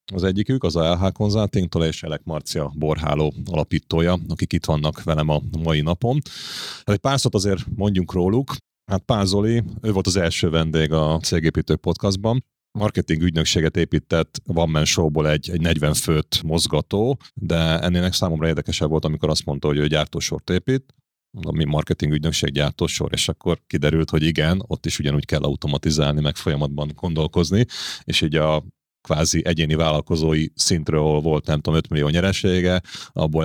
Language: Hungarian